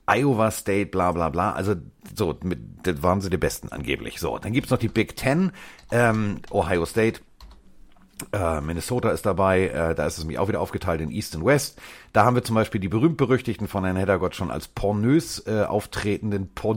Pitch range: 90-115 Hz